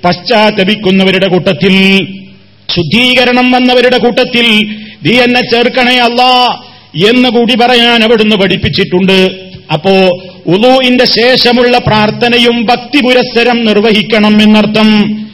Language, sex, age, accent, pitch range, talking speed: Malayalam, male, 40-59, native, 210-245 Hz, 90 wpm